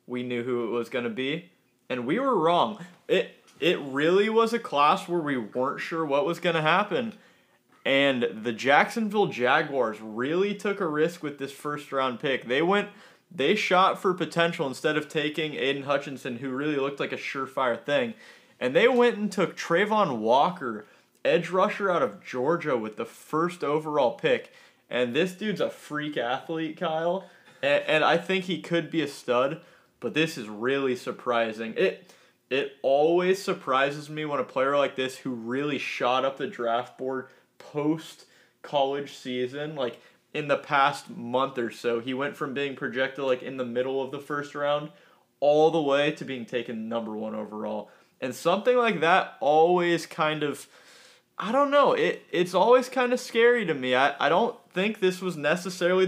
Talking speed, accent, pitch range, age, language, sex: 180 wpm, American, 130-180 Hz, 20-39, English, male